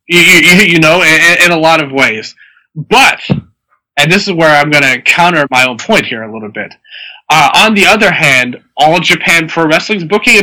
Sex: male